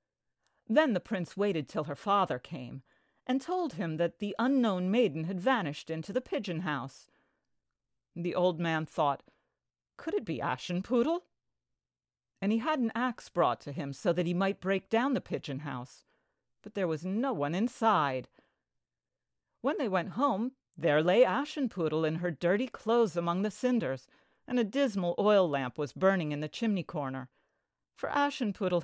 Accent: American